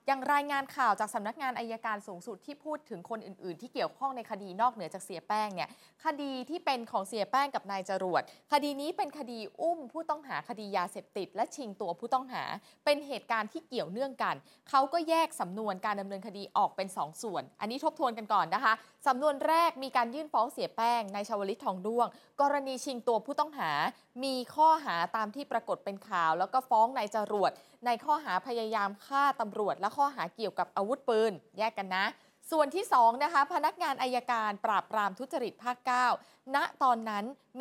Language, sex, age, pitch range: Thai, female, 20-39, 205-275 Hz